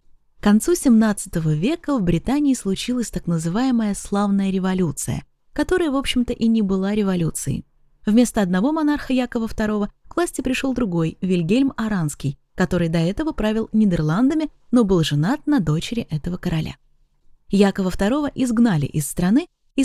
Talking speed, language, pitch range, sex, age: 140 wpm, Russian, 175-260 Hz, female, 20-39